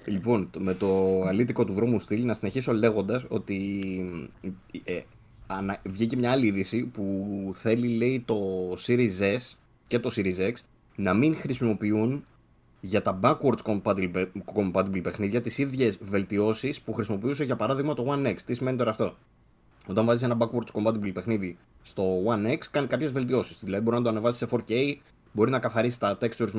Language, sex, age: Greek, male, 20-39